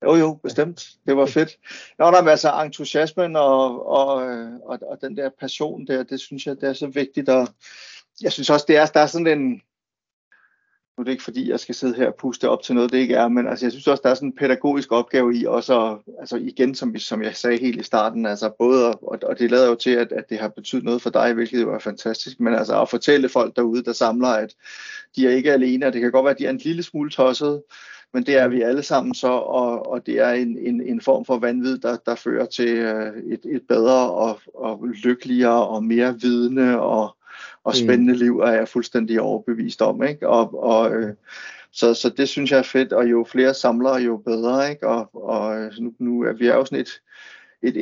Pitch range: 120-140 Hz